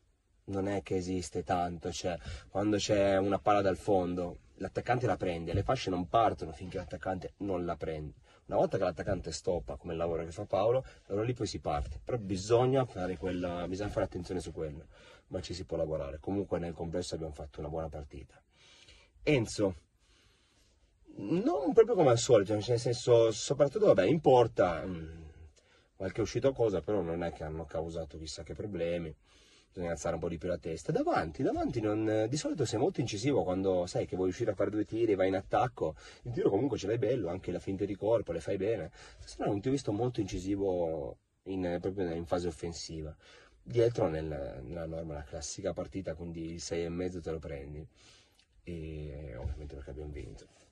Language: Italian